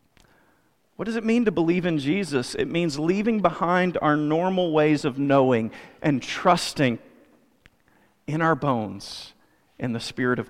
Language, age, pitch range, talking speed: English, 40-59, 130-185 Hz, 150 wpm